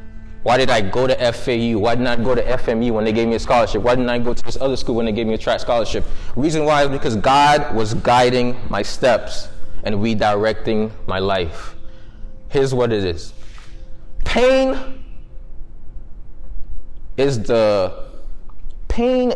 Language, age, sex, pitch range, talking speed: English, 20-39, male, 105-155 Hz, 165 wpm